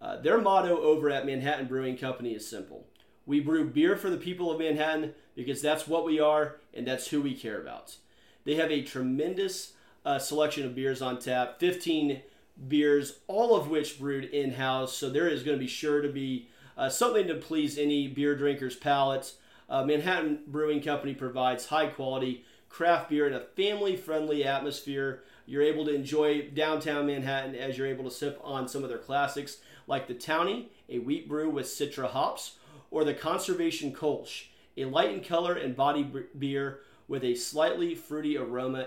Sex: male